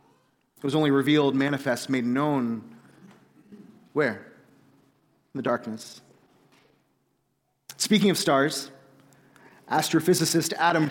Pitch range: 130-170 Hz